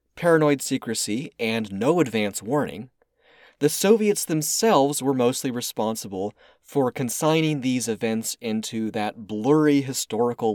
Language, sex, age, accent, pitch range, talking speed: English, male, 30-49, American, 105-150 Hz, 115 wpm